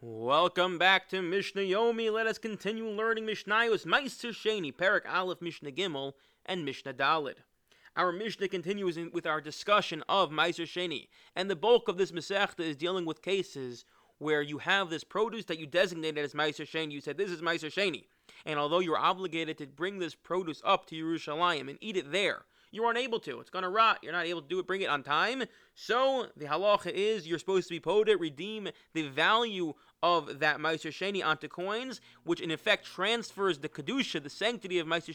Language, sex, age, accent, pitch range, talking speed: English, male, 30-49, American, 160-200 Hz, 200 wpm